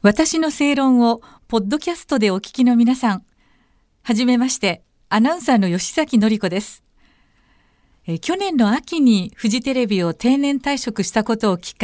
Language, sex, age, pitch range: Japanese, female, 50-69, 190-250 Hz